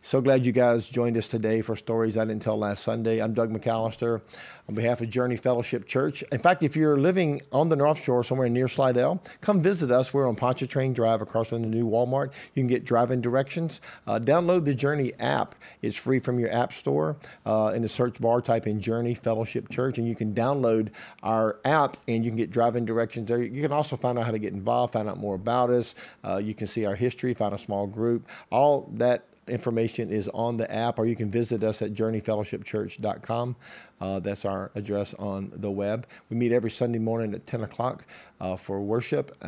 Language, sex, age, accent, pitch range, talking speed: English, male, 50-69, American, 110-125 Hz, 215 wpm